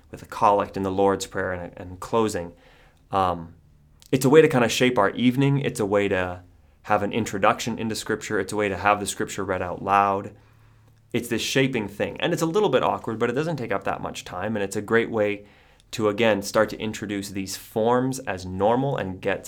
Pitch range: 95-115 Hz